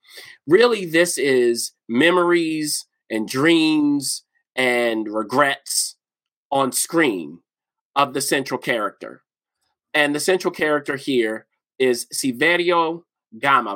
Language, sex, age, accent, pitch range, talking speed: English, male, 30-49, American, 130-175 Hz, 95 wpm